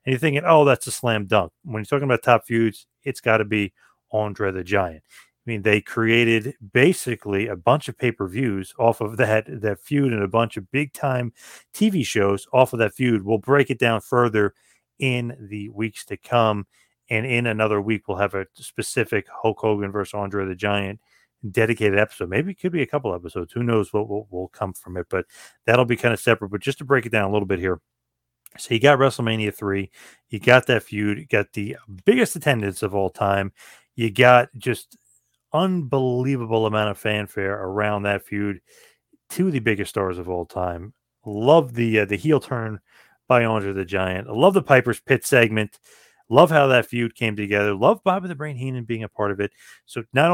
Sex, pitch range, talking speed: male, 105-130 Hz, 205 wpm